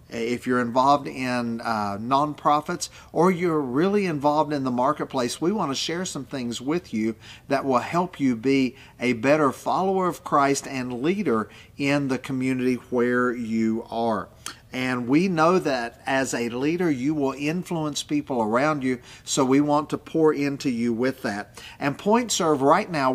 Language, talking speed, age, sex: English, 170 wpm, 40-59, male